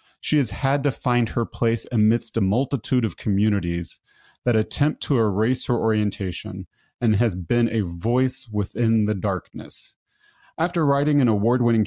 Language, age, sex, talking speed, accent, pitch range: English, 30-49, male, 150 wpm, American, 105-125 Hz